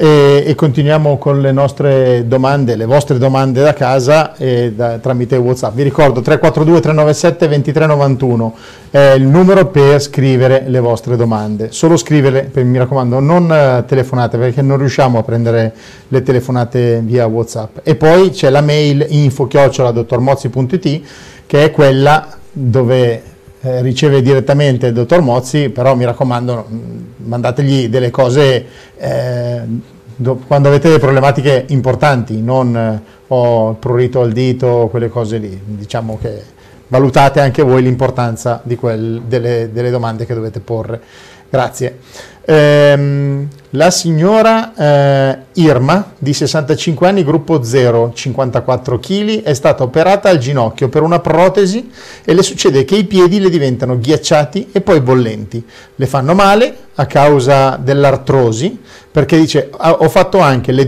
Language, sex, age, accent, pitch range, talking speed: Italian, male, 40-59, native, 120-150 Hz, 135 wpm